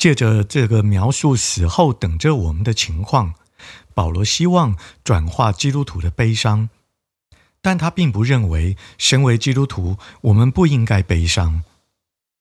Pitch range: 95-135 Hz